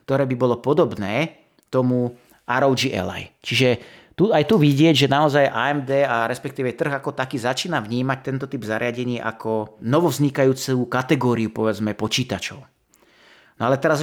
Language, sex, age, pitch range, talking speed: Slovak, male, 30-49, 115-140 Hz, 140 wpm